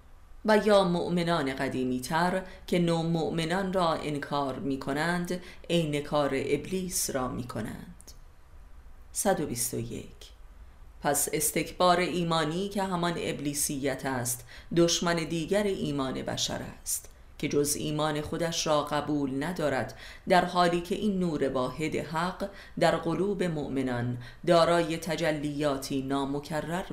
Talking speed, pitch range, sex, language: 110 wpm, 125-170 Hz, female, Persian